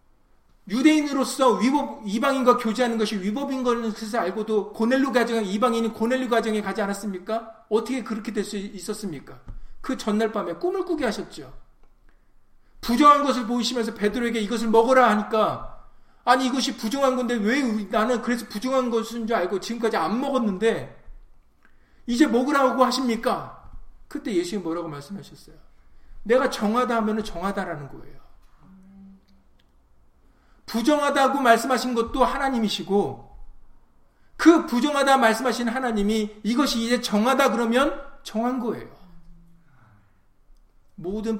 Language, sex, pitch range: Korean, male, 195-255 Hz